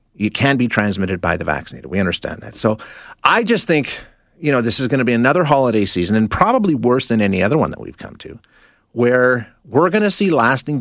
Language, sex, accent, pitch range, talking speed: English, male, American, 110-145 Hz, 230 wpm